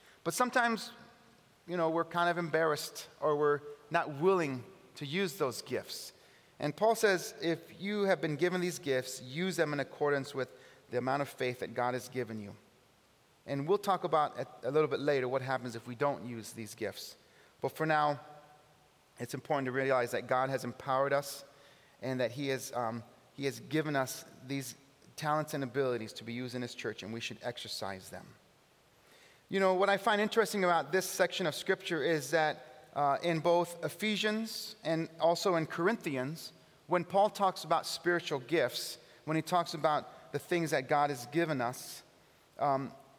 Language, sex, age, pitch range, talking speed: English, male, 30-49, 135-175 Hz, 180 wpm